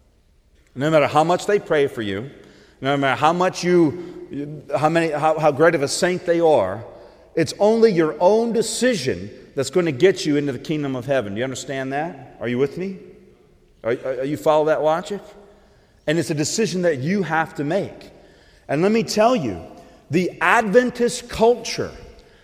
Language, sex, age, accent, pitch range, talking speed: English, male, 40-59, American, 115-170 Hz, 185 wpm